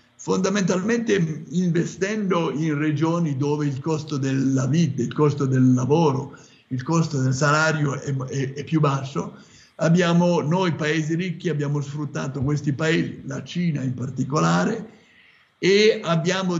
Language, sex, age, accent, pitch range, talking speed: Italian, male, 60-79, native, 145-175 Hz, 130 wpm